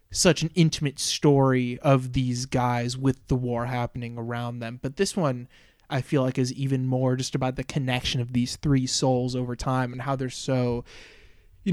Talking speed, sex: 190 wpm, male